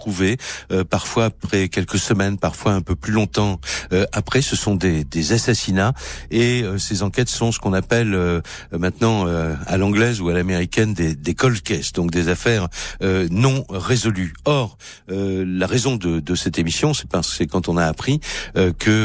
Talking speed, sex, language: 165 wpm, male, French